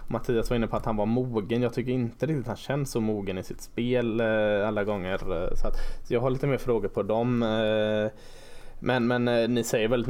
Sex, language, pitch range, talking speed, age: male, Swedish, 100-115 Hz, 230 wpm, 20-39